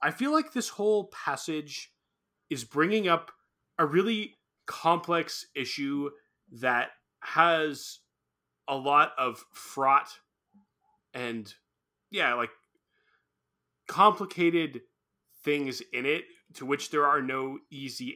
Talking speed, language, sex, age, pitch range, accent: 105 wpm, English, male, 30-49, 120-165 Hz, American